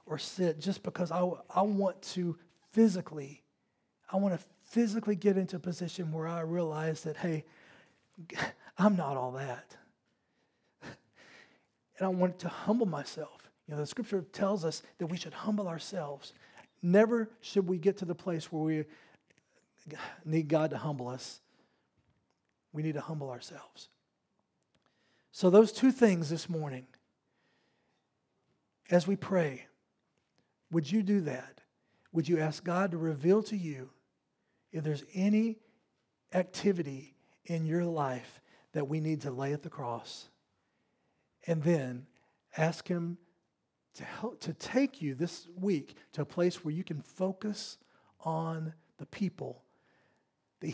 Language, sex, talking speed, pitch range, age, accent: English, male, 140 wpm, 155-190 Hz, 40-59, American